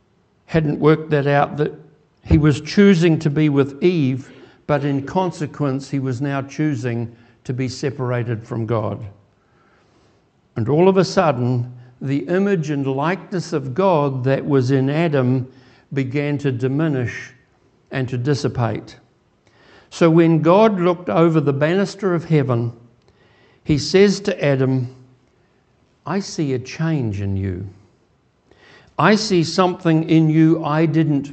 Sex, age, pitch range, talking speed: male, 60-79, 130-165 Hz, 135 wpm